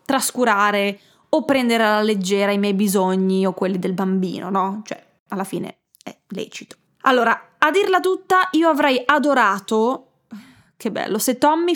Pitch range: 200-255 Hz